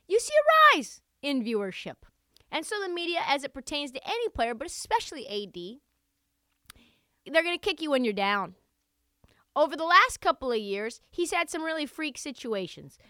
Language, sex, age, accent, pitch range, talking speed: English, female, 30-49, American, 225-300 Hz, 180 wpm